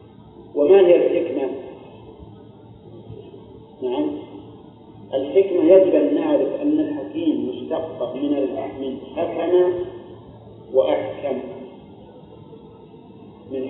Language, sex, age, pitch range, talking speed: Arabic, male, 50-69, 145-190 Hz, 65 wpm